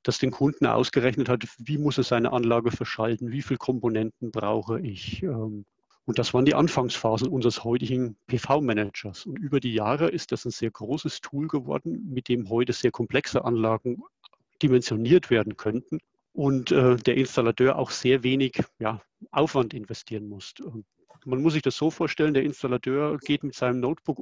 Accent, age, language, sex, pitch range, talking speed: German, 50-69, German, male, 120-140 Hz, 160 wpm